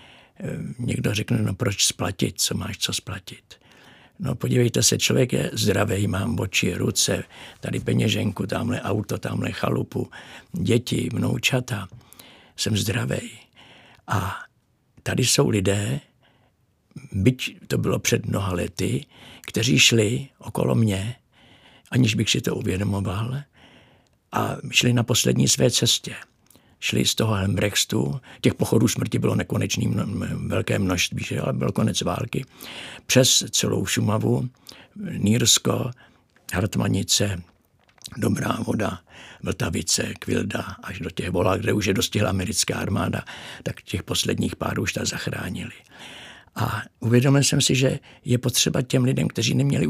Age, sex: 60-79, male